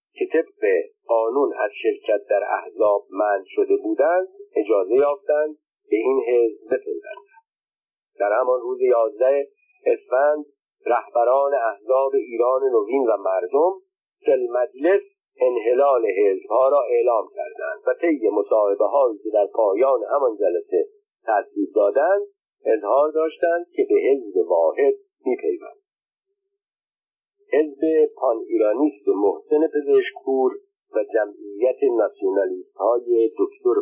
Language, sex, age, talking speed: Persian, male, 50-69, 110 wpm